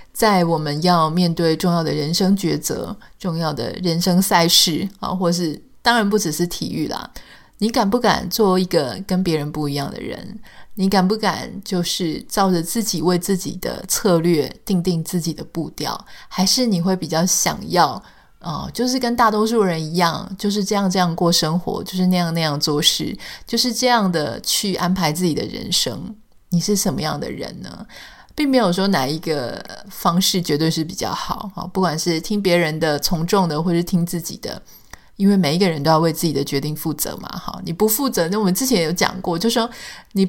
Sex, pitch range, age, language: female, 165-205 Hz, 20-39, Chinese